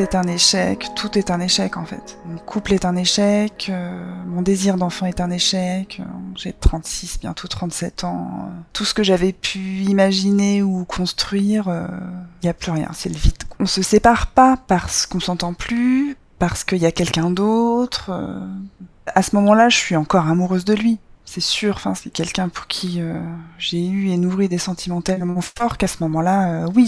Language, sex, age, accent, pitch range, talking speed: French, female, 20-39, French, 175-205 Hz, 200 wpm